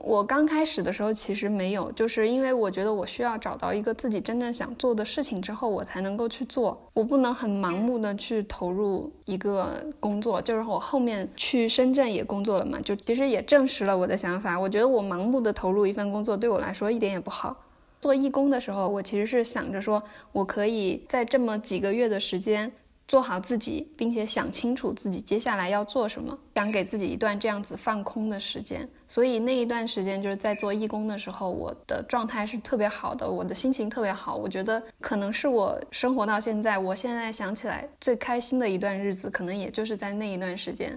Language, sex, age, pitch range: Chinese, female, 10-29, 200-245 Hz